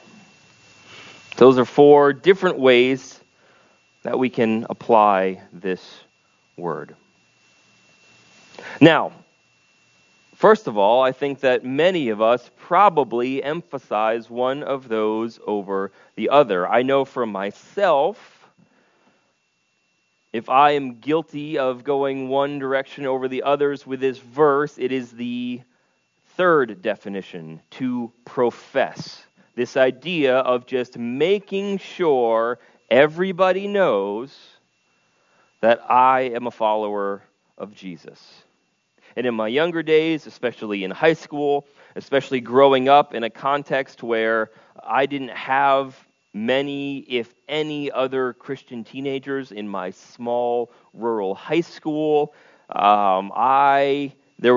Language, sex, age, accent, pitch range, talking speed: English, male, 30-49, American, 115-140 Hz, 115 wpm